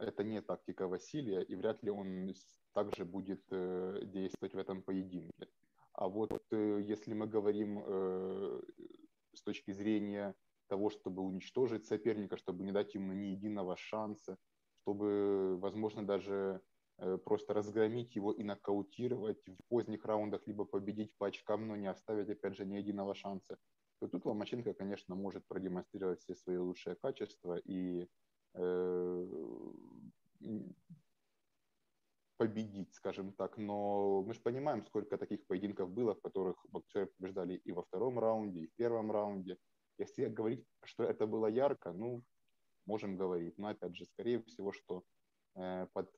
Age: 20-39